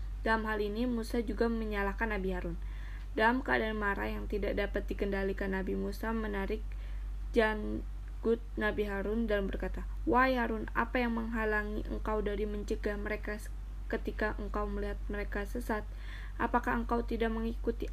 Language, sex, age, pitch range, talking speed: Indonesian, female, 20-39, 205-235 Hz, 135 wpm